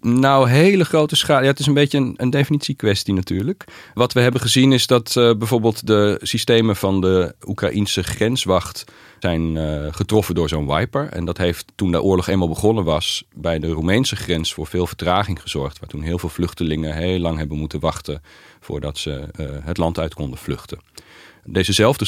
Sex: male